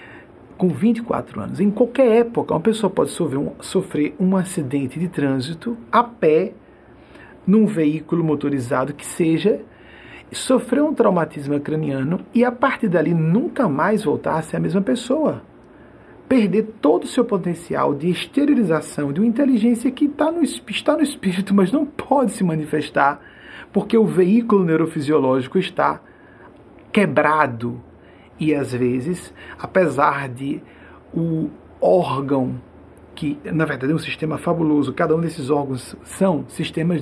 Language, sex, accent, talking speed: Portuguese, male, Brazilian, 135 wpm